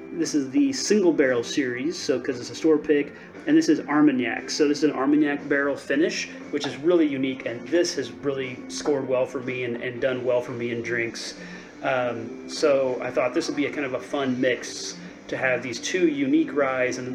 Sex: male